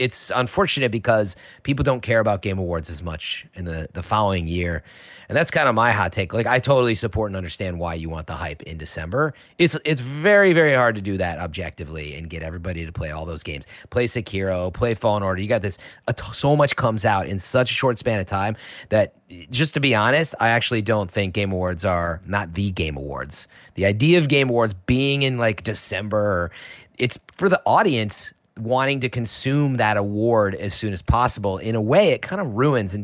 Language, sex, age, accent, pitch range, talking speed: English, male, 30-49, American, 90-120 Hz, 215 wpm